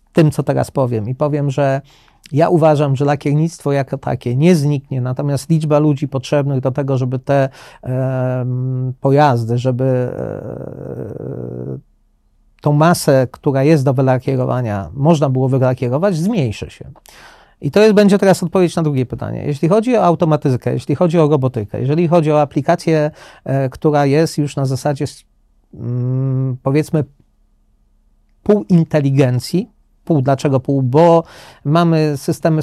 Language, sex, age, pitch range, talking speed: Polish, male, 40-59, 135-160 Hz, 130 wpm